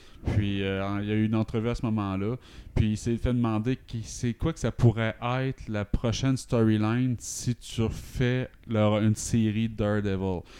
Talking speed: 180 wpm